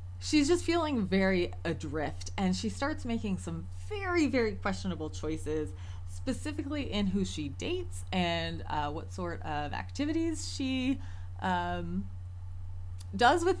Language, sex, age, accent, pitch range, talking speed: English, female, 20-39, American, 90-110 Hz, 130 wpm